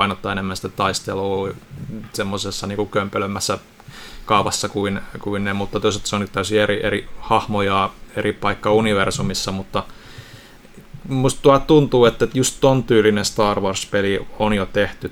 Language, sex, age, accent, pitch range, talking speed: Finnish, male, 30-49, native, 100-110 Hz, 135 wpm